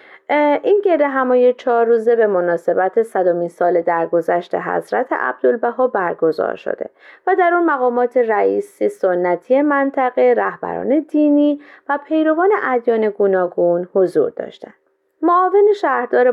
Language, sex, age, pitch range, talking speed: Persian, female, 30-49, 185-300 Hz, 115 wpm